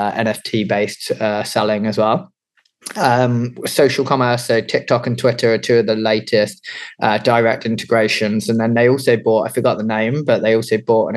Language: English